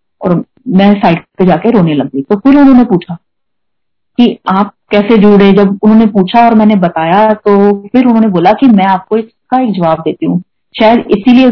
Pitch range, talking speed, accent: 185-250 Hz, 190 wpm, native